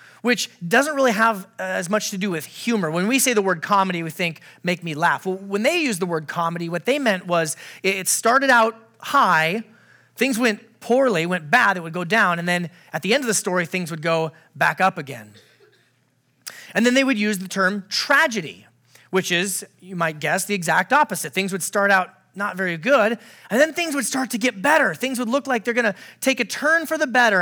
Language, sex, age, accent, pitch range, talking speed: English, male, 30-49, American, 175-235 Hz, 220 wpm